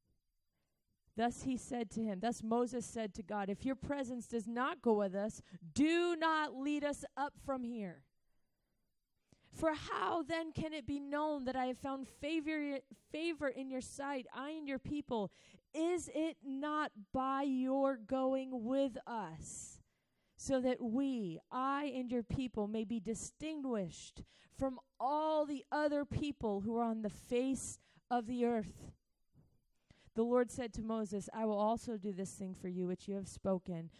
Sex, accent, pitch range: female, American, 220-295 Hz